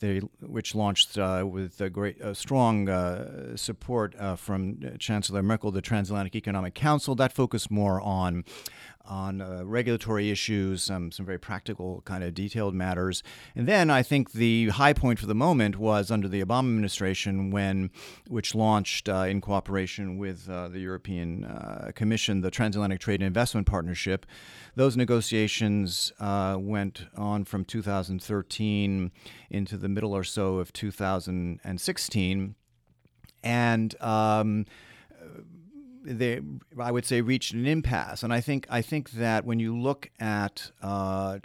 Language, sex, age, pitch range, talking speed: English, male, 40-59, 95-120 Hz, 150 wpm